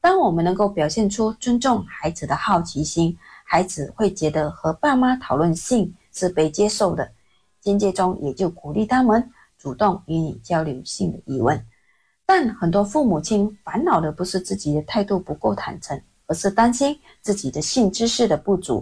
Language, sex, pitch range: Chinese, female, 160-250 Hz